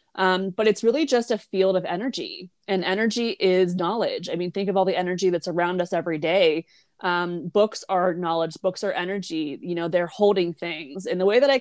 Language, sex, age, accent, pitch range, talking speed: English, female, 20-39, American, 175-210 Hz, 215 wpm